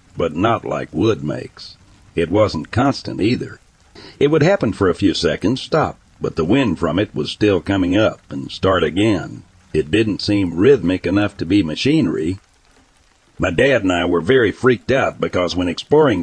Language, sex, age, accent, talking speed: English, male, 60-79, American, 180 wpm